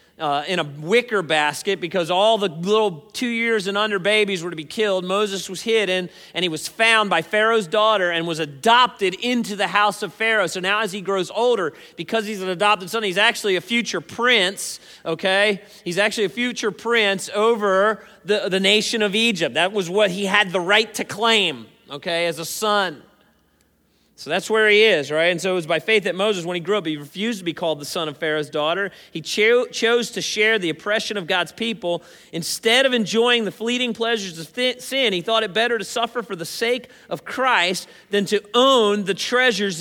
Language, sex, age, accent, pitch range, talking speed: English, male, 40-59, American, 185-235 Hz, 210 wpm